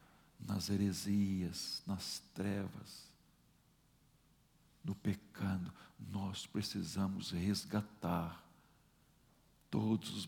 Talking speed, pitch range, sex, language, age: 65 wpm, 105-150 Hz, male, Portuguese, 60-79